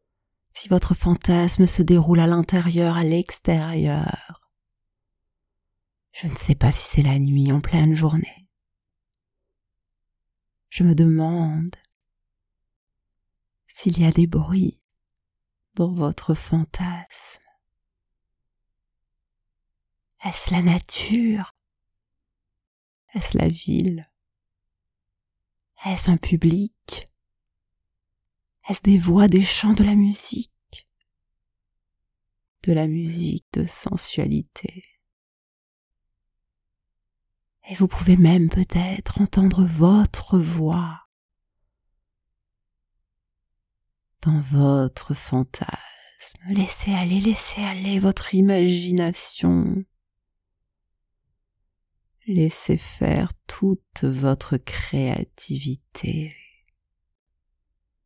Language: French